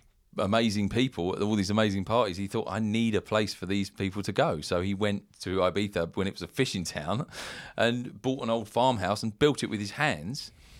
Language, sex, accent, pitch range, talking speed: English, male, British, 90-110 Hz, 215 wpm